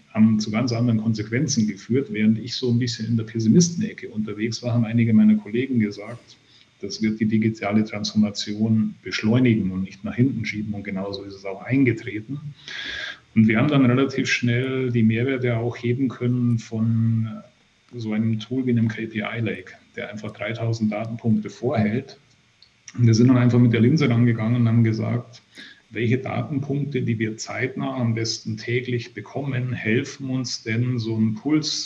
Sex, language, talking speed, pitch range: male, German, 170 wpm, 110-125 Hz